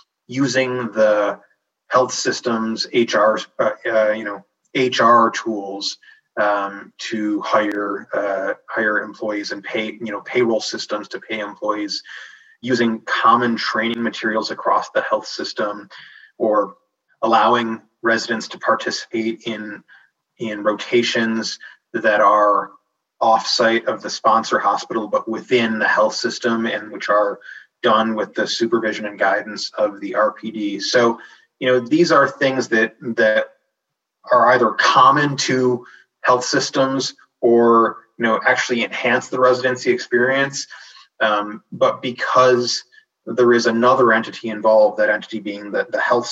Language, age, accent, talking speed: English, 20-39, American, 130 wpm